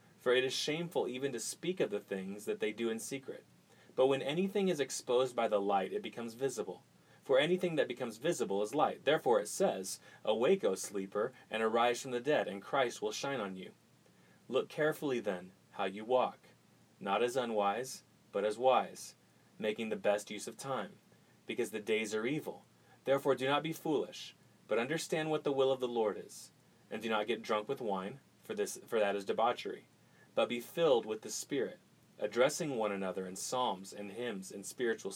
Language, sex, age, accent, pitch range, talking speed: English, male, 30-49, American, 105-140 Hz, 195 wpm